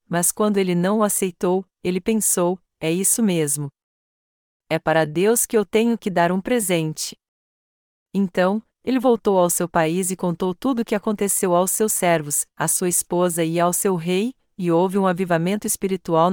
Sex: female